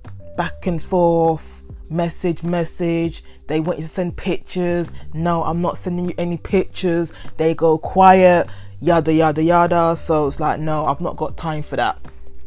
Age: 20-39